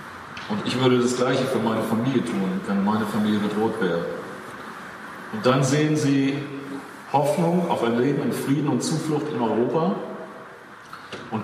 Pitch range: 115-140 Hz